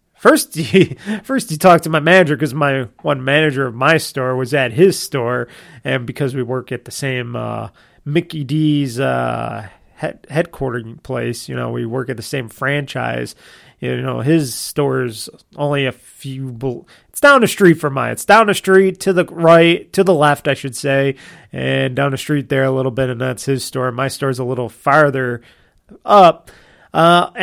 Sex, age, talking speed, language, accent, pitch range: male, 30-49, 190 wpm, English, American, 130-185 Hz